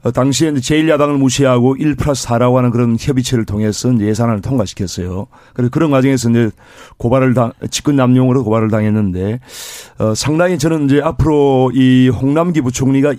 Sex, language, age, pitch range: male, Korean, 40-59, 115-150 Hz